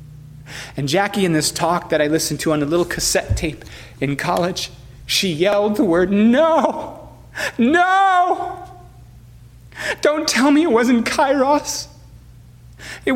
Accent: American